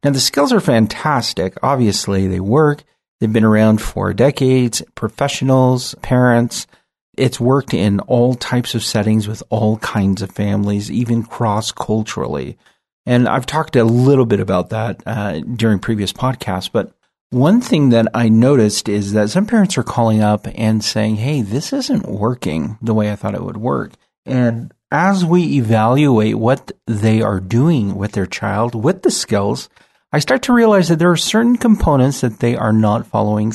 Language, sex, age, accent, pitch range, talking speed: English, male, 40-59, American, 110-140 Hz, 170 wpm